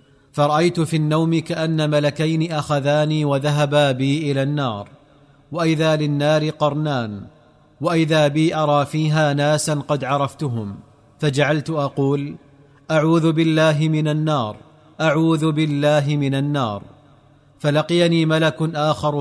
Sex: male